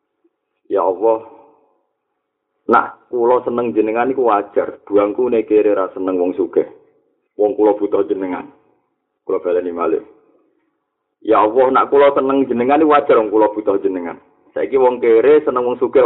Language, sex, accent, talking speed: Indonesian, male, native, 170 wpm